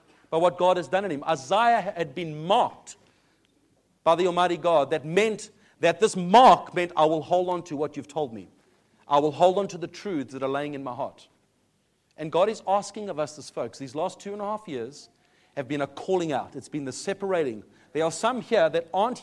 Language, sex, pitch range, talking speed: English, male, 150-205 Hz, 225 wpm